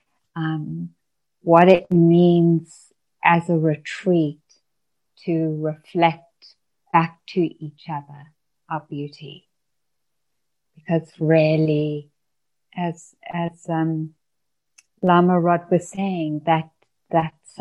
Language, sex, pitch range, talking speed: English, female, 155-180 Hz, 90 wpm